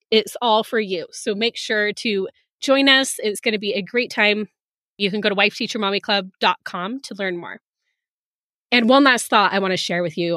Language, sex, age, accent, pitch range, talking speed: English, female, 20-39, American, 200-260 Hz, 205 wpm